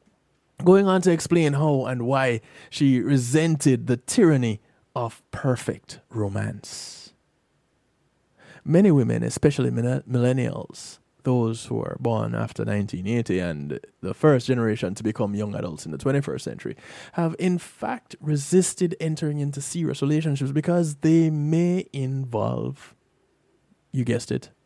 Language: English